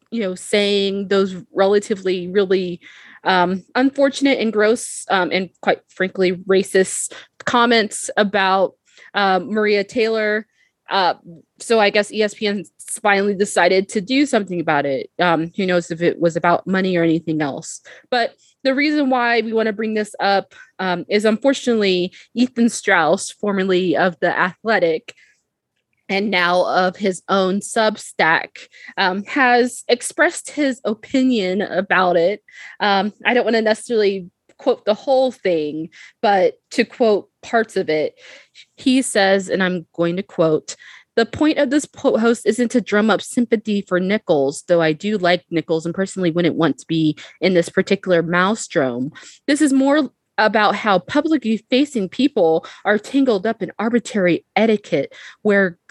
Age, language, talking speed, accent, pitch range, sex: 20-39, English, 150 wpm, American, 180-235 Hz, female